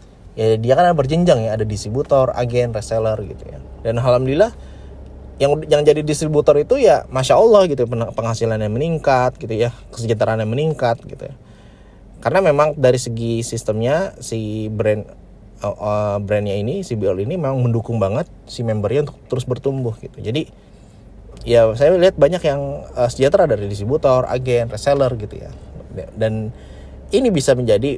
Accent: native